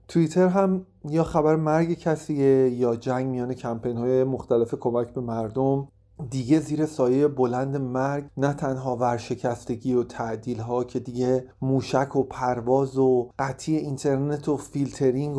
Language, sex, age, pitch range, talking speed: Persian, male, 30-49, 120-140 Hz, 135 wpm